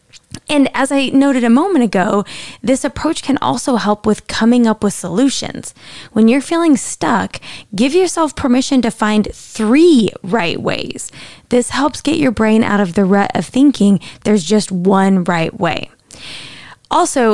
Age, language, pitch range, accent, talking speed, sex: 20-39, English, 205-275 Hz, American, 160 wpm, female